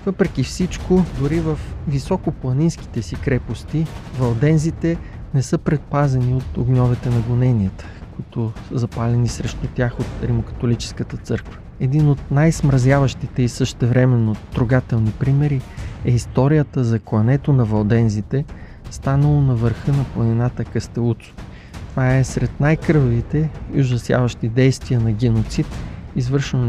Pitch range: 115-145 Hz